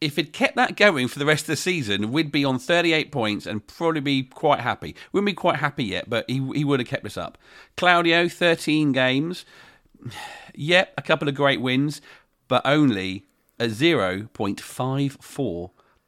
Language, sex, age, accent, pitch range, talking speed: English, male, 40-59, British, 120-165 Hz, 180 wpm